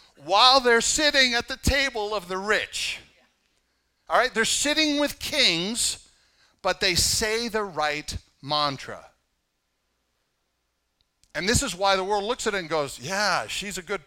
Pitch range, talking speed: 130-210 Hz, 155 wpm